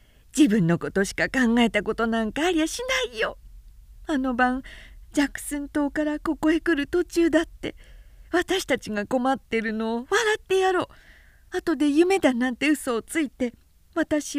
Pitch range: 255-345 Hz